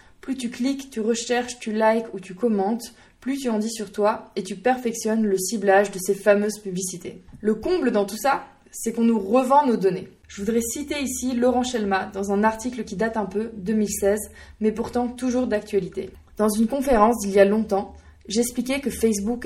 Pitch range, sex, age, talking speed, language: 205-250 Hz, female, 20-39, 195 wpm, French